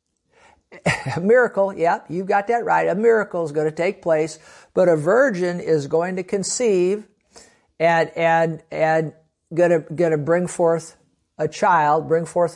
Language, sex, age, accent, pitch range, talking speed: English, male, 50-69, American, 160-195 Hz, 165 wpm